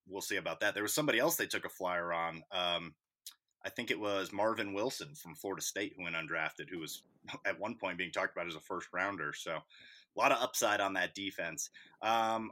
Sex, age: male, 30-49